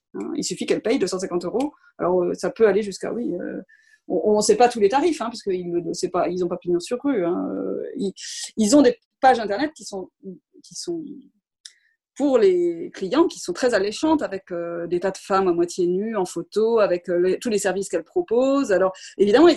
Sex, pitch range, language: female, 190-270 Hz, French